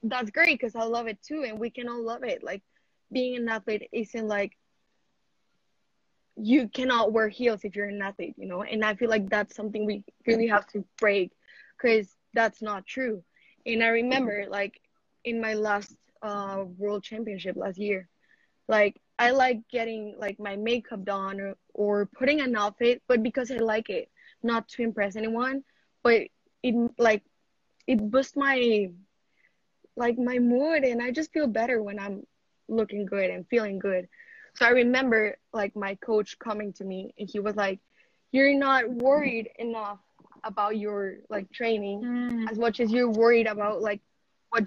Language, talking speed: English, 170 wpm